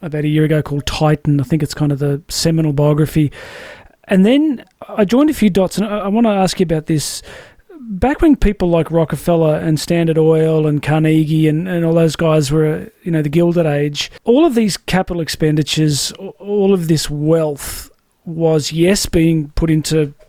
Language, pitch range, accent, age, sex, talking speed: English, 155-190 Hz, Australian, 30-49, male, 190 wpm